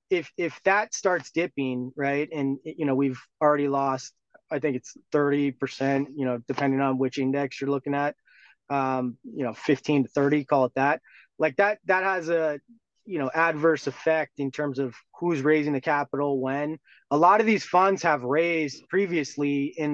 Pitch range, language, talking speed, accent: 140-170 Hz, English, 180 wpm, American